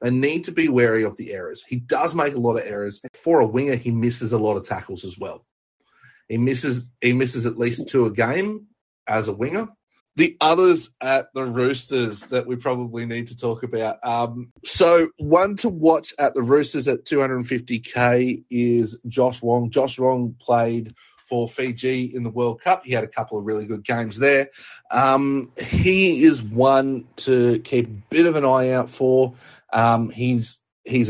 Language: English